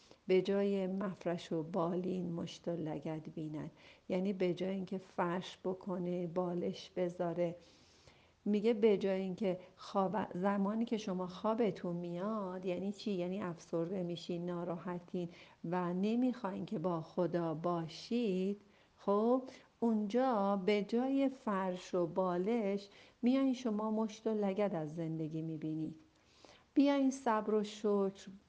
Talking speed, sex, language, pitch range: 120 wpm, female, Persian, 170-200 Hz